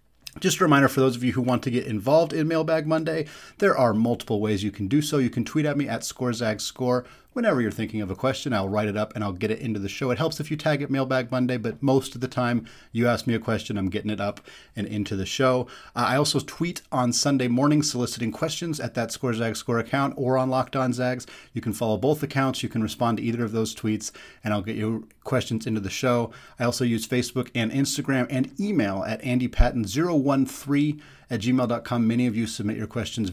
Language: English